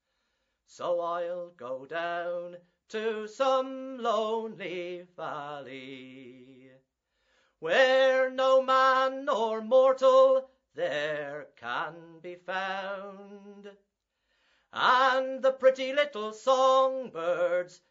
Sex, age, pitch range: male, 40-59, 170-240 Hz